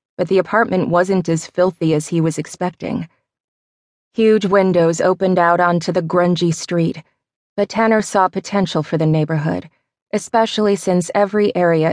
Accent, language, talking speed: American, English, 145 wpm